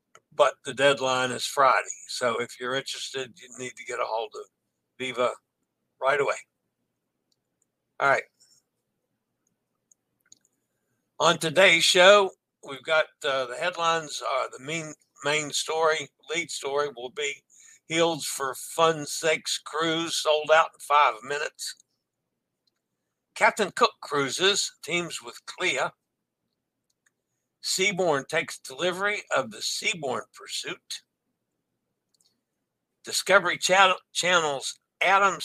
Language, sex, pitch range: English, male, 135-175 Hz